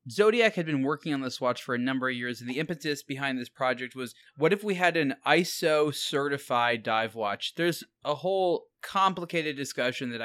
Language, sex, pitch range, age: English, male, 120-150 Hz, 20-39